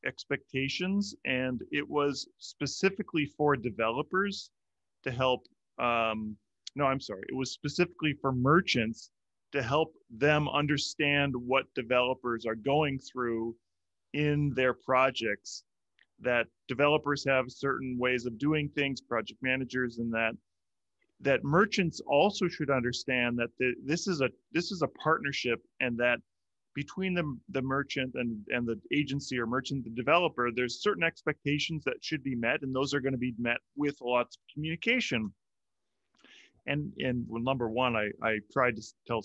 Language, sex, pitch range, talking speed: English, male, 115-145 Hz, 150 wpm